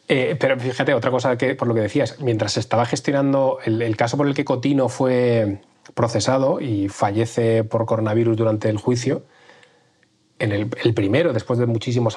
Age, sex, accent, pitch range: 20-39, male, Spanish, 110-125 Hz